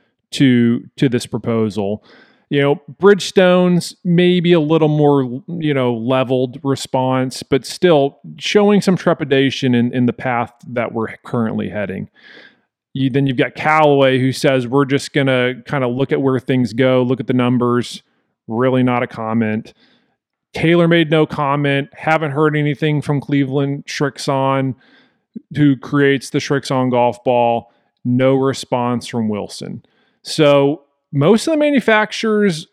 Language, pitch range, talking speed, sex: English, 120-150 Hz, 145 wpm, male